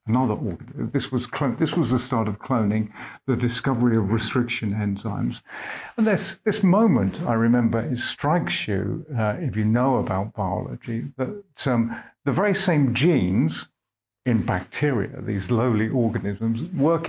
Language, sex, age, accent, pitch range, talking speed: English, male, 50-69, British, 110-130 Hz, 145 wpm